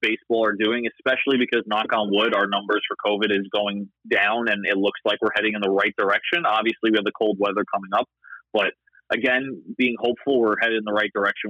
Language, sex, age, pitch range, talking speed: English, male, 30-49, 110-140 Hz, 225 wpm